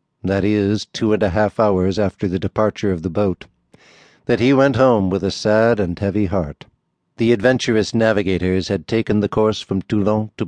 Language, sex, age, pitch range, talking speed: English, male, 60-79, 100-125 Hz, 190 wpm